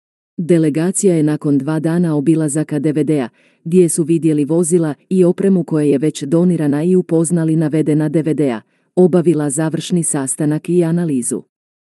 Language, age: Croatian, 40-59